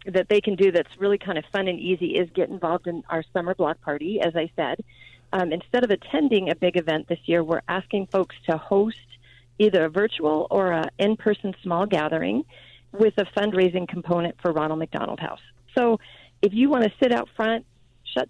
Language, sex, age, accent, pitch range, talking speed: English, female, 40-59, American, 160-200 Hz, 200 wpm